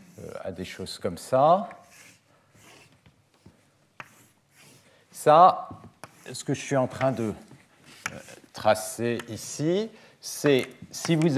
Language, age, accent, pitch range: French, 50-69, French, 115-155 Hz